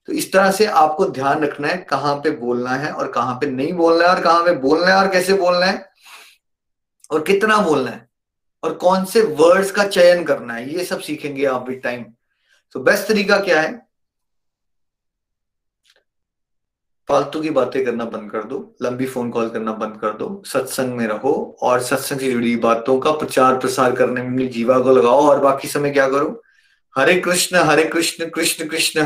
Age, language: 30-49, Hindi